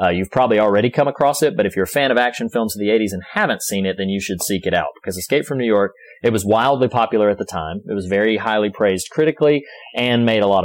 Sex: male